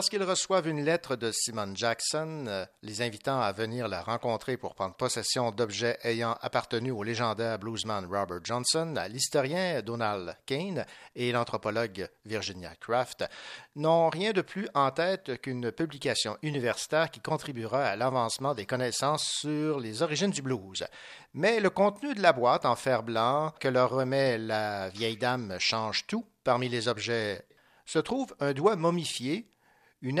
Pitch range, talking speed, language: 115-155 Hz, 155 wpm, French